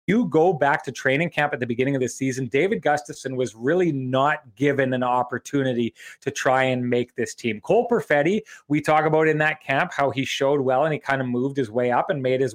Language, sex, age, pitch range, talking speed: English, male, 30-49, 130-155 Hz, 235 wpm